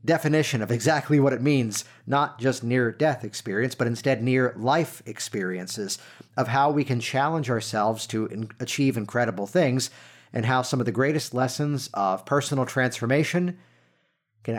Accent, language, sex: American, English, male